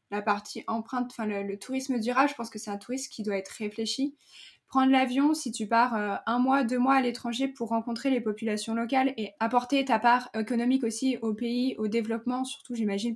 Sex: female